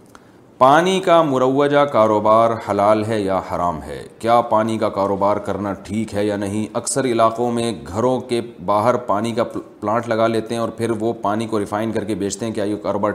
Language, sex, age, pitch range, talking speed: Urdu, male, 30-49, 110-135 Hz, 195 wpm